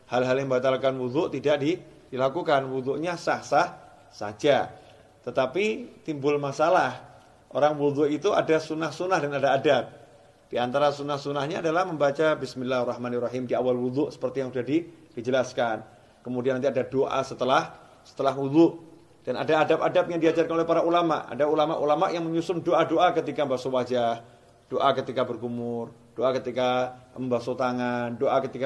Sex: male